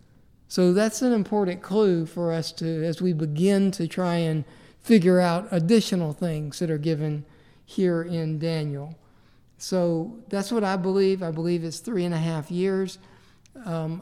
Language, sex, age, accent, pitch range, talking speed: English, male, 50-69, American, 160-195 Hz, 165 wpm